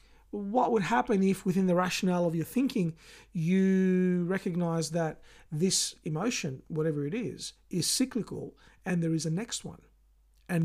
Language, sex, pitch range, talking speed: English, male, 155-195 Hz, 150 wpm